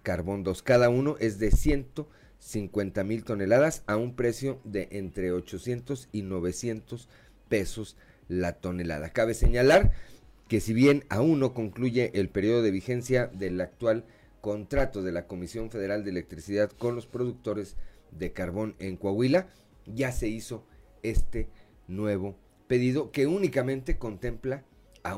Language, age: Spanish, 40-59